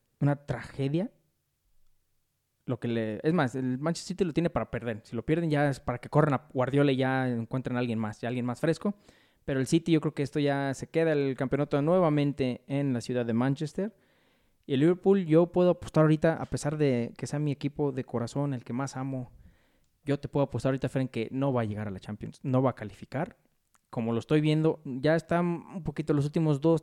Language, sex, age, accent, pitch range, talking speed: Spanish, male, 20-39, Mexican, 125-145 Hz, 225 wpm